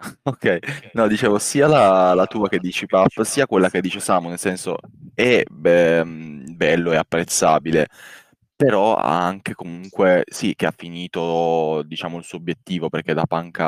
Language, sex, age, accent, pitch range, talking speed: Italian, male, 20-39, native, 80-95 Hz, 160 wpm